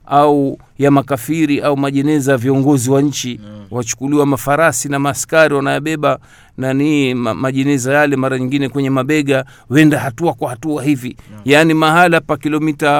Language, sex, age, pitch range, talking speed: Swahili, male, 50-69, 140-190 Hz, 145 wpm